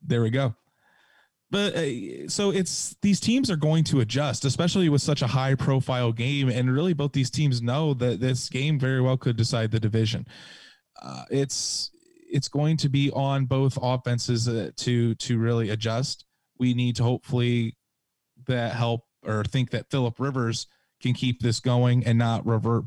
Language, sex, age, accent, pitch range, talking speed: English, male, 20-39, American, 115-145 Hz, 175 wpm